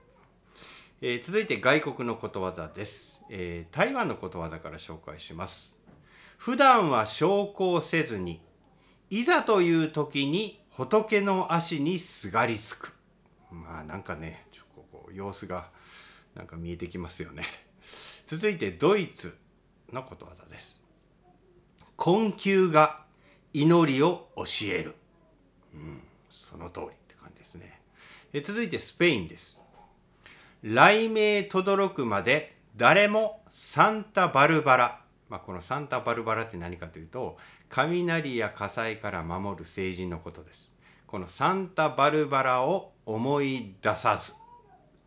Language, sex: Japanese, male